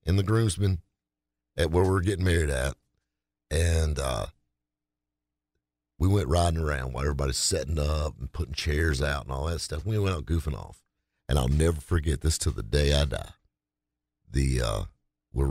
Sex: male